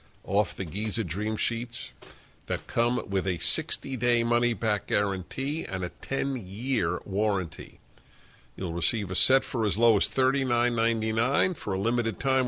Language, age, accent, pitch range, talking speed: English, 60-79, American, 95-130 Hz, 140 wpm